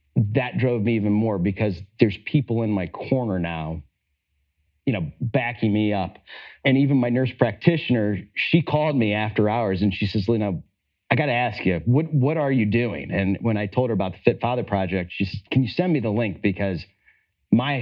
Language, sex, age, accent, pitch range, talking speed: English, male, 40-59, American, 100-125 Hz, 205 wpm